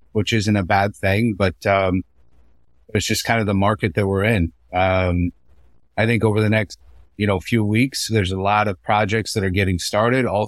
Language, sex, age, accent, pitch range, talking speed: English, male, 30-49, American, 90-110 Hz, 205 wpm